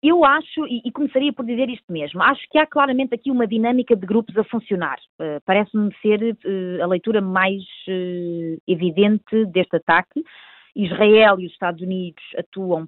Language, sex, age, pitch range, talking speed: Portuguese, female, 20-39, 195-270 Hz, 155 wpm